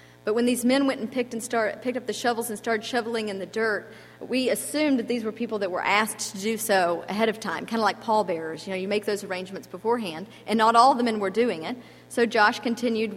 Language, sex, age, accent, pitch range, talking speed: English, female, 40-59, American, 185-235 Hz, 260 wpm